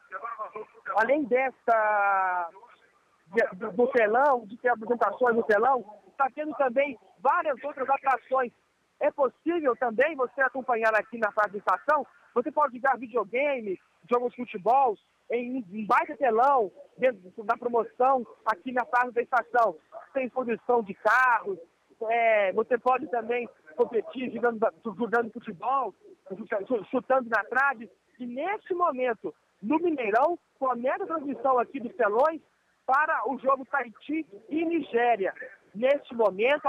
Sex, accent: male, Brazilian